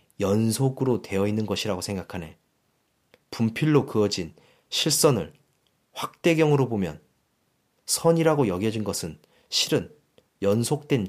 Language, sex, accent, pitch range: Korean, male, native, 100-140 Hz